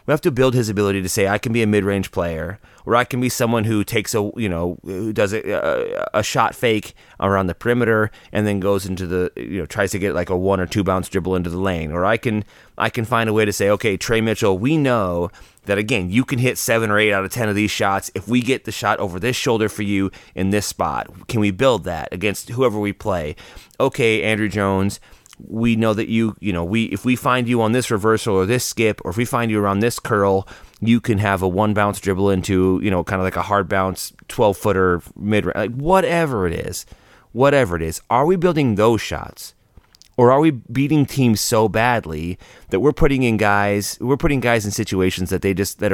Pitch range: 95-120 Hz